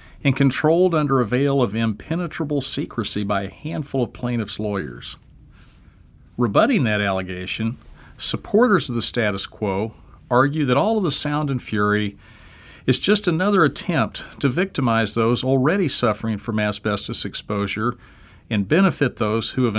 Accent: American